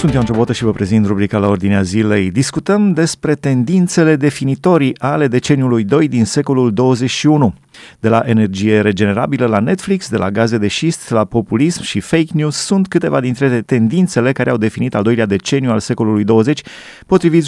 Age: 30-49